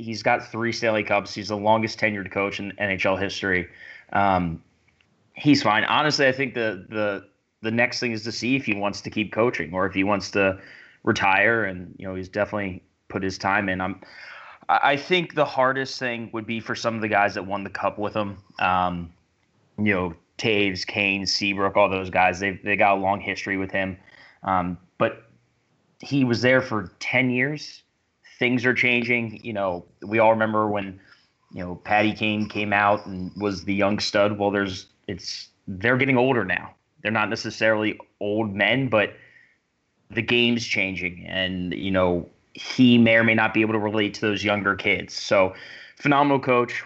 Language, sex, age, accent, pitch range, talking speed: English, male, 20-39, American, 95-115 Hz, 190 wpm